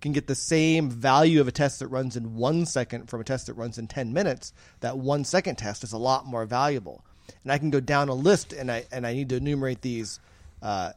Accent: American